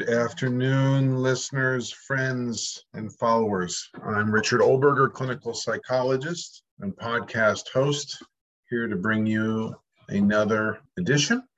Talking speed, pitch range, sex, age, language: 105 wpm, 105-140 Hz, male, 50-69, English